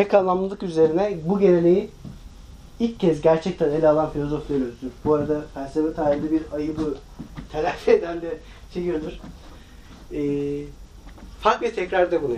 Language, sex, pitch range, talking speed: Turkish, male, 145-195 Hz, 130 wpm